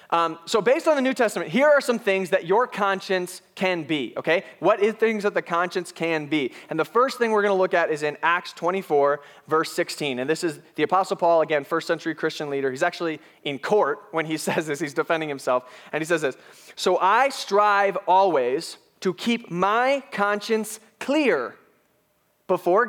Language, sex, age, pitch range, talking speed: English, male, 20-39, 165-220 Hz, 200 wpm